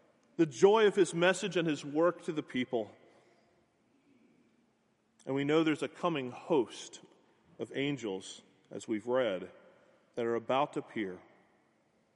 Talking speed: 140 wpm